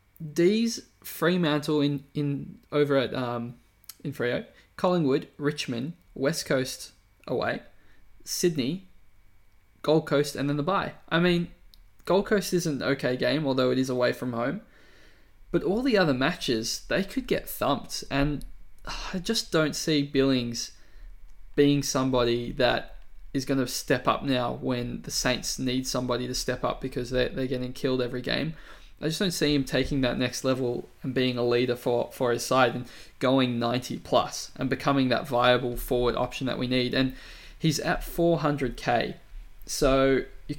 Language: English